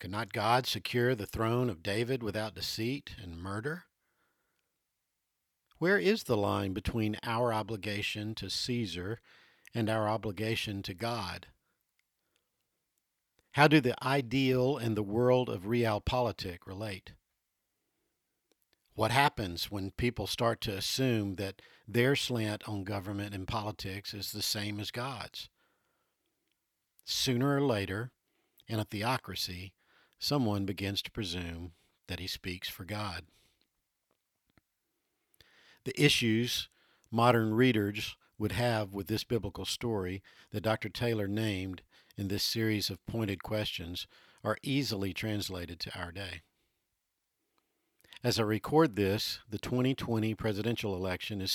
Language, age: English, 50-69